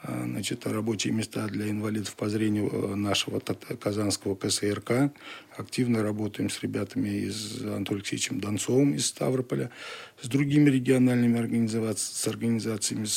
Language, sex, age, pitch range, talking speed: Russian, male, 40-59, 110-130 Hz, 125 wpm